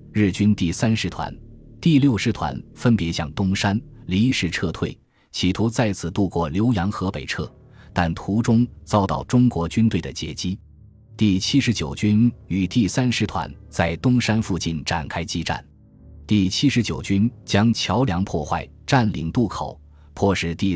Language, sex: Chinese, male